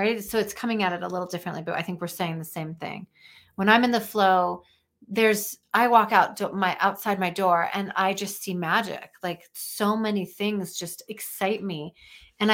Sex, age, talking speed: female, 30-49, 210 wpm